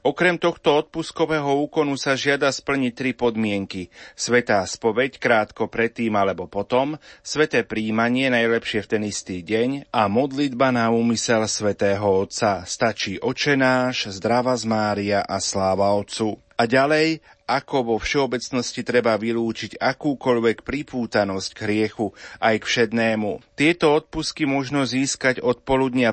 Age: 30-49